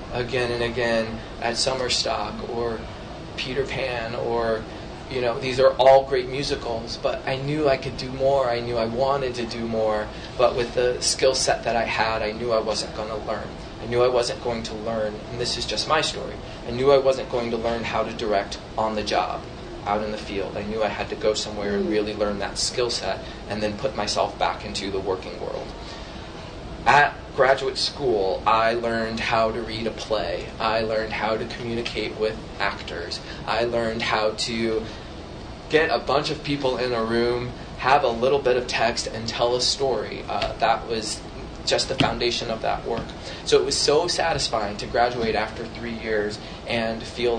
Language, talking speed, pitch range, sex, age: English, 200 wpm, 110-120 Hz, male, 20-39